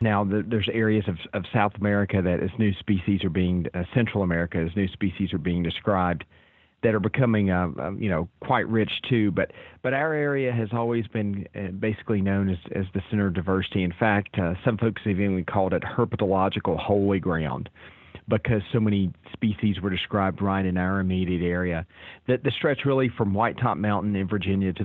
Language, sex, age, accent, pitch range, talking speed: English, male, 40-59, American, 95-110 Hz, 195 wpm